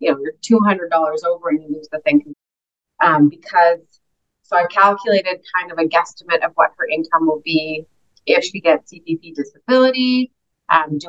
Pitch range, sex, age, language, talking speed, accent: 165-220 Hz, female, 30-49, English, 175 wpm, American